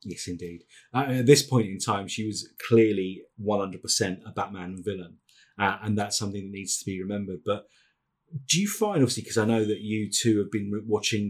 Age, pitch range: 30-49, 110-140 Hz